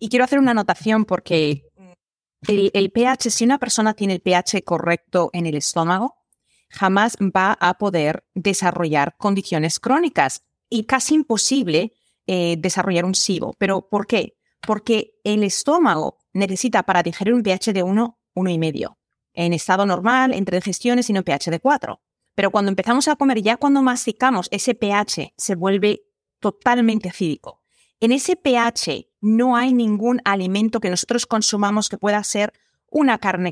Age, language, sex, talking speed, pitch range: 30-49, Spanish, female, 155 wpm, 190-250 Hz